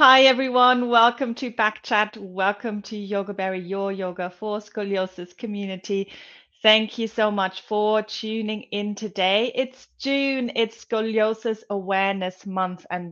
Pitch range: 185-225 Hz